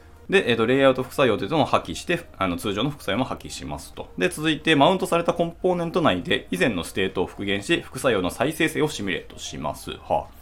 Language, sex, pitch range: Japanese, male, 80-130 Hz